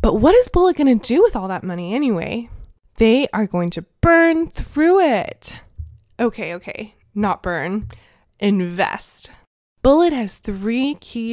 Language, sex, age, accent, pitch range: Chinese, female, 20-39, American, 190-245 Hz